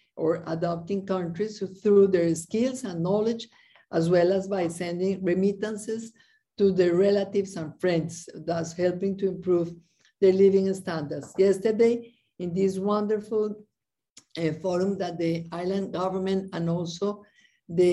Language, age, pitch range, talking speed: English, 50-69, 175-215 Hz, 130 wpm